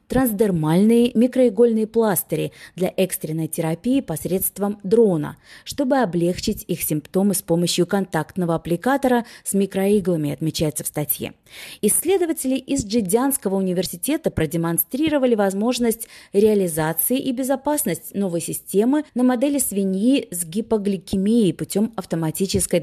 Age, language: 30-49, Russian